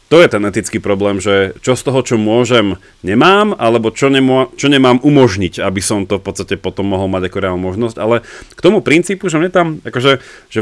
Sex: male